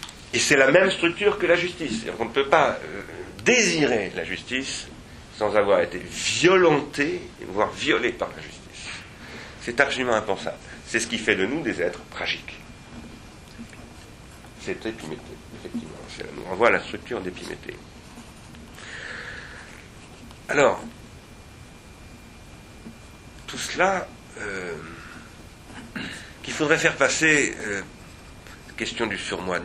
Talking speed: 125 wpm